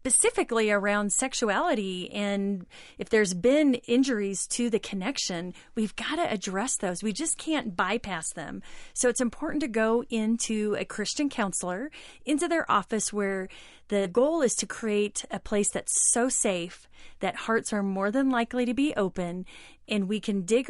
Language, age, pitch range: English, 30-49, 200-250 Hz